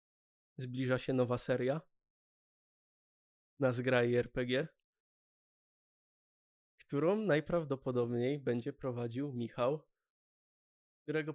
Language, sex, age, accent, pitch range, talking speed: Polish, male, 20-39, native, 120-130 Hz, 70 wpm